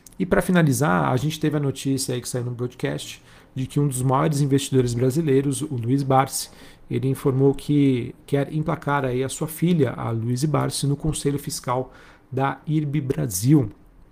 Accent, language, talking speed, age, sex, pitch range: Brazilian, Portuguese, 165 wpm, 40-59, male, 130-145 Hz